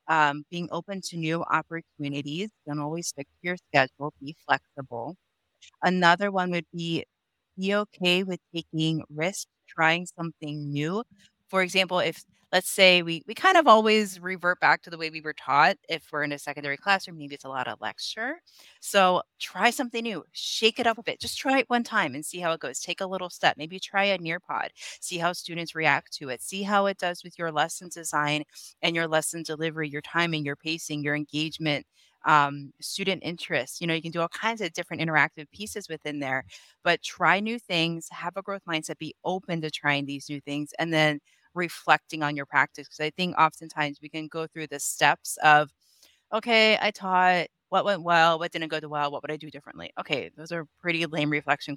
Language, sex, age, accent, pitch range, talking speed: English, female, 30-49, American, 150-185 Hz, 205 wpm